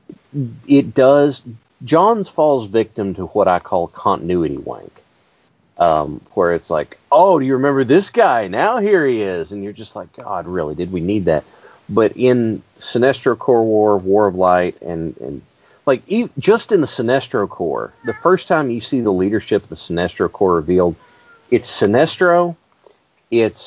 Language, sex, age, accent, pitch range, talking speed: English, male, 40-59, American, 95-135 Hz, 170 wpm